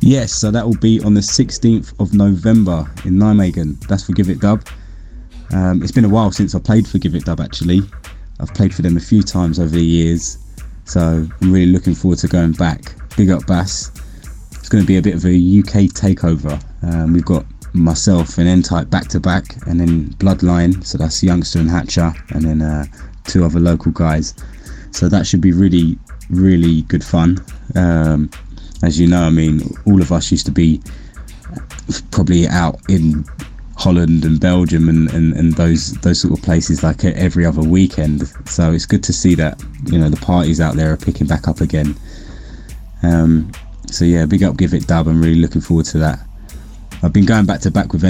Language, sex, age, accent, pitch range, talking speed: English, male, 20-39, British, 80-95 Hz, 195 wpm